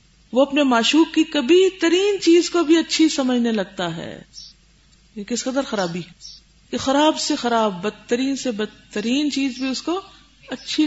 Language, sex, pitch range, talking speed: Urdu, female, 185-250 Hz, 165 wpm